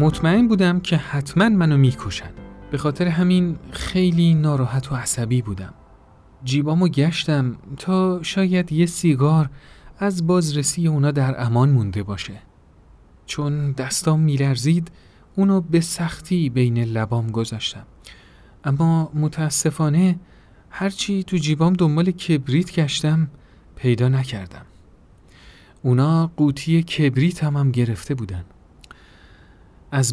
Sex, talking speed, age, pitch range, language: male, 110 wpm, 40-59, 125-165 Hz, Persian